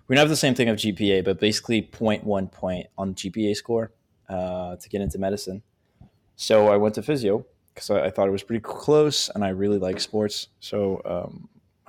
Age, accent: 20-39, American